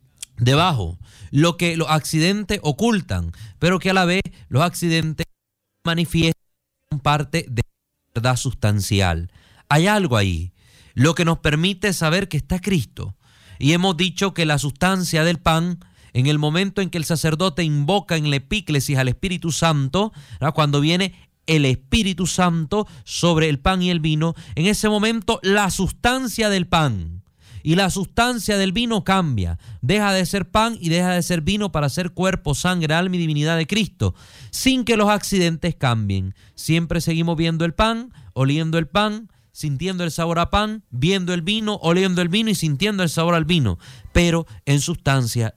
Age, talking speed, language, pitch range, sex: 30-49, 170 wpm, Spanish, 125-185 Hz, male